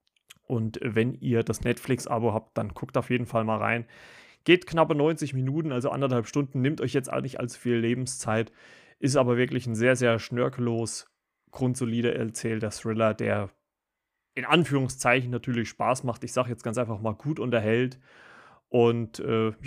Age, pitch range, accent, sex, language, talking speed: 30-49, 115-130 Hz, German, male, German, 165 wpm